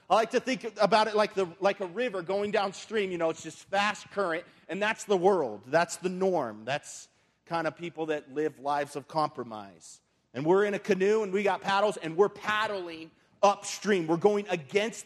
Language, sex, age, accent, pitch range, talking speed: English, male, 40-59, American, 160-205 Hz, 205 wpm